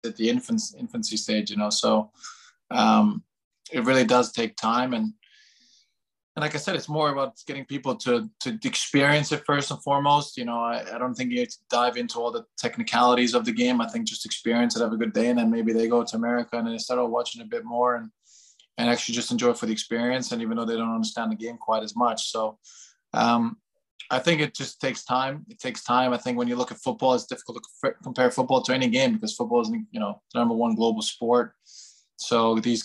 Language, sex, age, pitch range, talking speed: English, male, 20-39, 115-150 Hz, 235 wpm